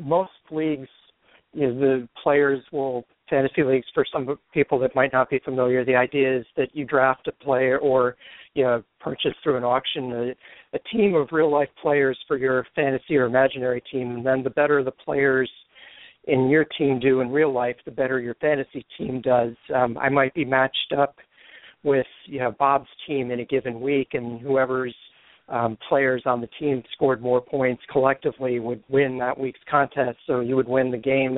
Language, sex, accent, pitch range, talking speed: English, male, American, 125-140 Hz, 190 wpm